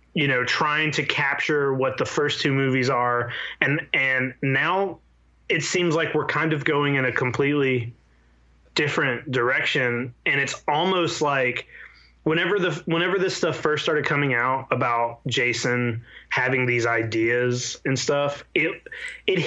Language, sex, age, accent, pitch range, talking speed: English, male, 20-39, American, 110-145 Hz, 150 wpm